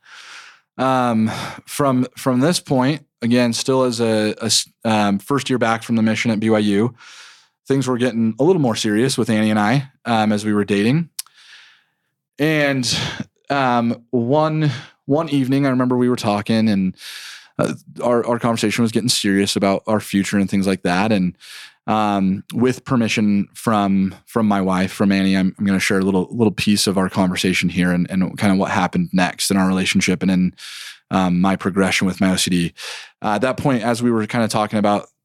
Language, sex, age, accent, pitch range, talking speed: English, male, 30-49, American, 100-120 Hz, 190 wpm